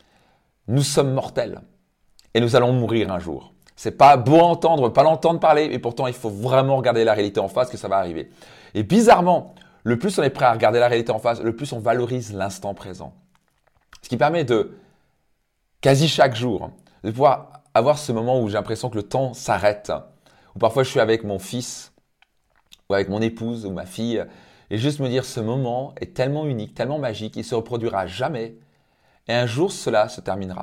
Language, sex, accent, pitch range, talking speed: French, male, French, 110-145 Hz, 200 wpm